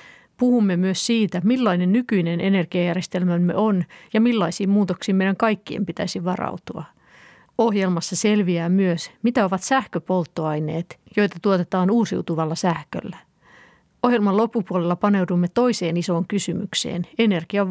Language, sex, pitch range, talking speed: Finnish, female, 170-210 Hz, 105 wpm